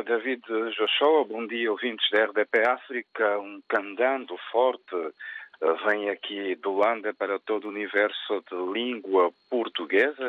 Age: 50-69